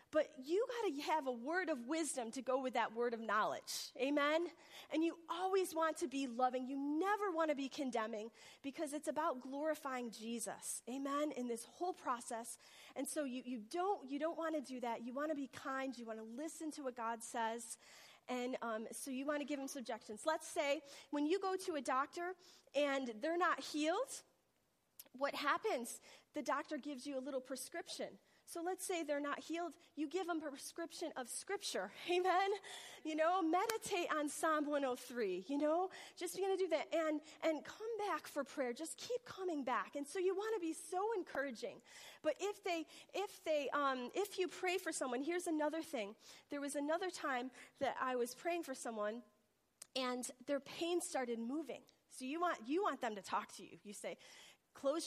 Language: English